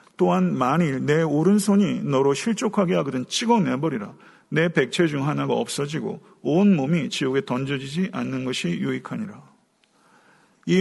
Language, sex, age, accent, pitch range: Korean, male, 50-69, native, 155-210 Hz